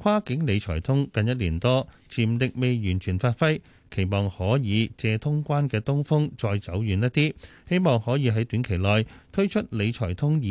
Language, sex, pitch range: Chinese, male, 100-140 Hz